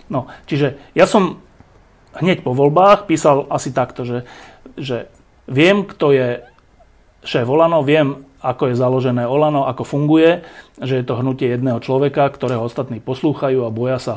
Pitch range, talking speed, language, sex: 120-145 Hz, 155 wpm, Slovak, male